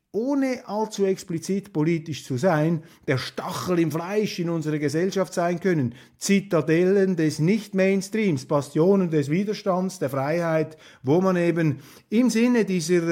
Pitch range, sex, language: 140-190 Hz, male, German